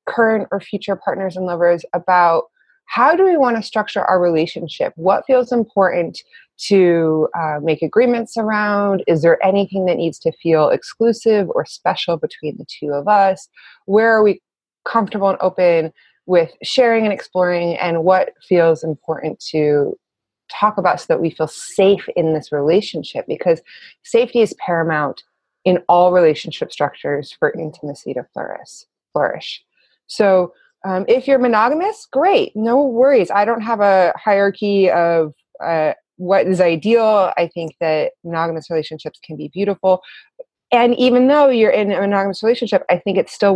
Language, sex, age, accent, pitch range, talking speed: English, female, 20-39, American, 165-215 Hz, 155 wpm